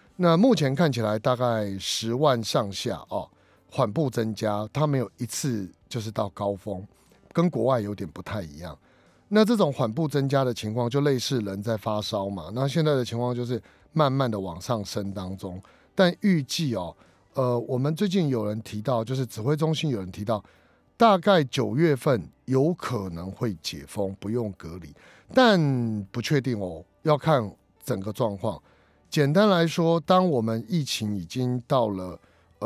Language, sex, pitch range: Chinese, male, 100-145 Hz